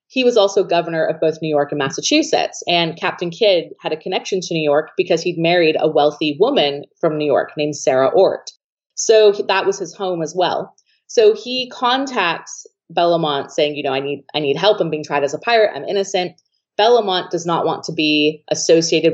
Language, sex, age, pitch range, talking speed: English, female, 30-49, 155-220 Hz, 205 wpm